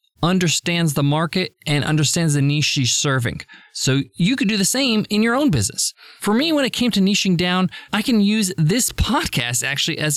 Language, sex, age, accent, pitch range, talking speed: English, male, 20-39, American, 150-205 Hz, 200 wpm